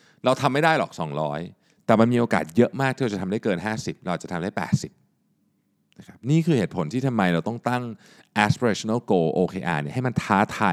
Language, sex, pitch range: Thai, male, 95-140 Hz